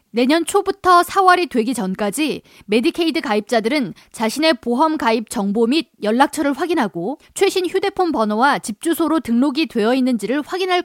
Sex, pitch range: female, 235-330 Hz